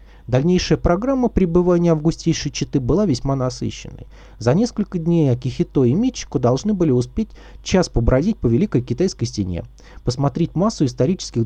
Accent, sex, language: native, male, Russian